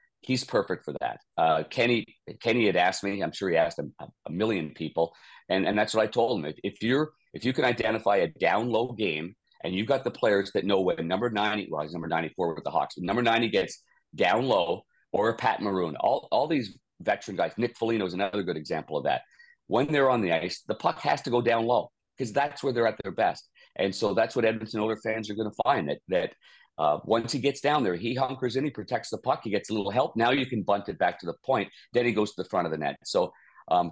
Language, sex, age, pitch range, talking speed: English, male, 50-69, 100-120 Hz, 260 wpm